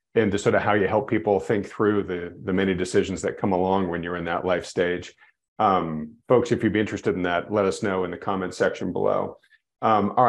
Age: 40-59